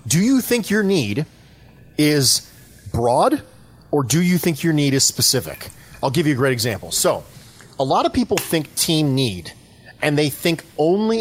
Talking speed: 175 wpm